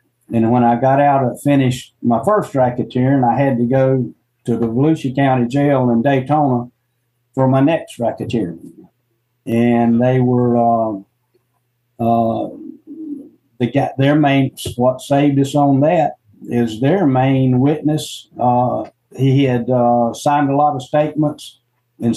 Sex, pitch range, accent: male, 120-140 Hz, American